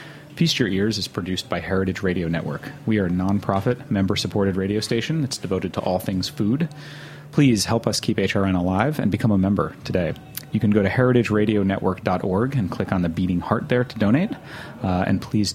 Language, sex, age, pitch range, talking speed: English, male, 30-49, 95-125 Hz, 195 wpm